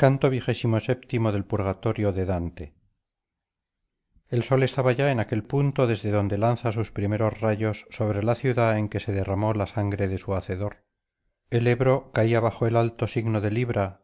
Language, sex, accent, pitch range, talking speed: Spanish, male, Spanish, 100-120 Hz, 170 wpm